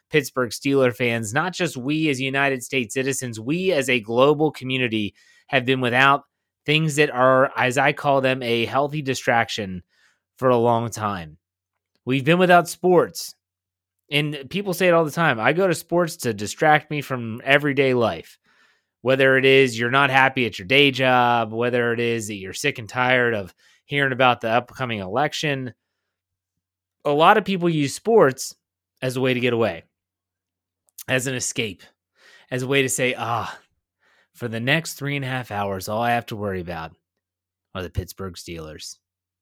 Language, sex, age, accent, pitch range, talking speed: English, male, 30-49, American, 100-135 Hz, 175 wpm